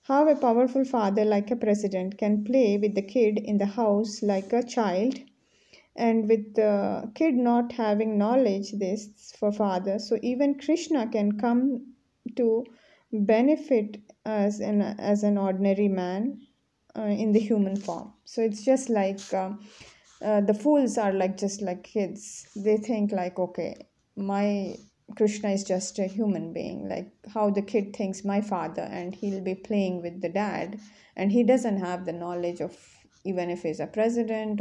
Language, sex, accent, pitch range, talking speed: English, female, Indian, 190-225 Hz, 165 wpm